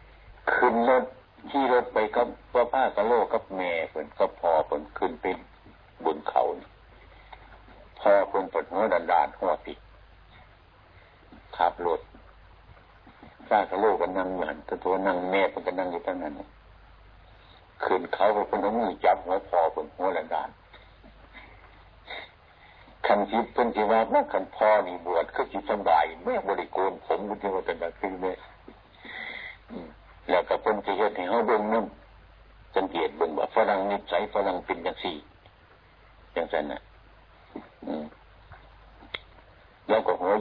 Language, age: Thai, 60-79